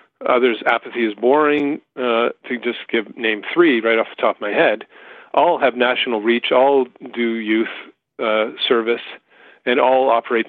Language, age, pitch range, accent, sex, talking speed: English, 40-59, 110-125 Hz, American, male, 165 wpm